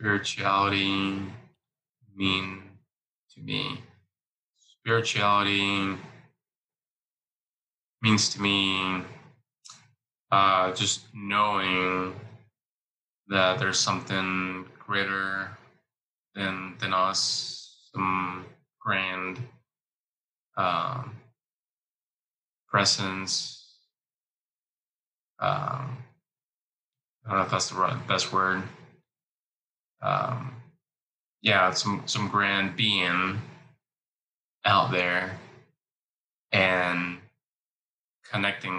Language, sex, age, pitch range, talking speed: English, male, 20-39, 95-115 Hz, 65 wpm